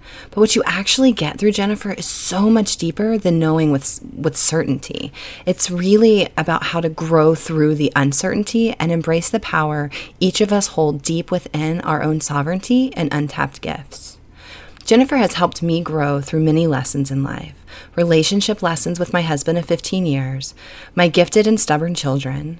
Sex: female